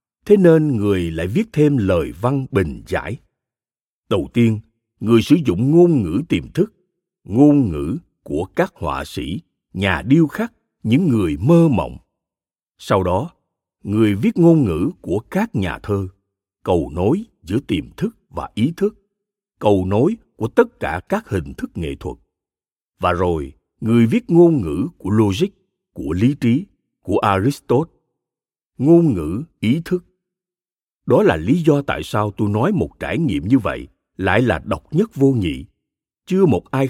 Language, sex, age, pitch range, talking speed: Vietnamese, male, 60-79, 100-160 Hz, 160 wpm